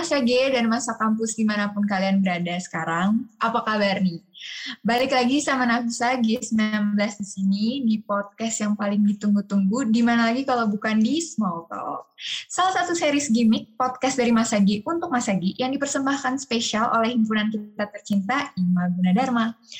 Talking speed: 150 wpm